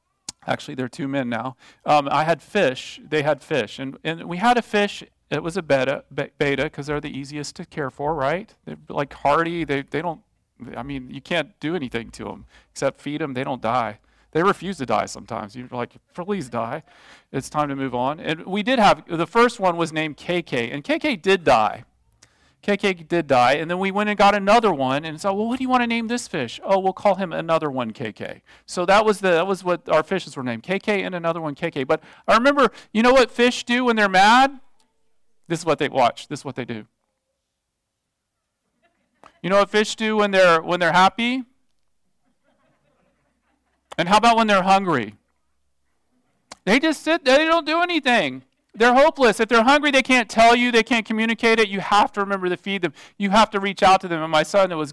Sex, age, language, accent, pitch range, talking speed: male, 40-59, English, American, 145-210 Hz, 220 wpm